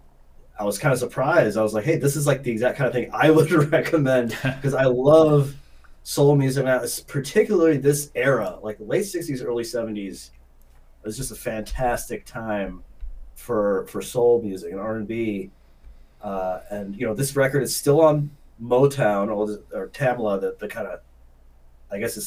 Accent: American